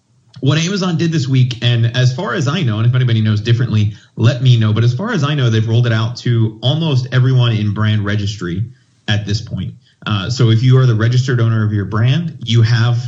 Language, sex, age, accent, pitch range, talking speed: English, male, 30-49, American, 110-125 Hz, 235 wpm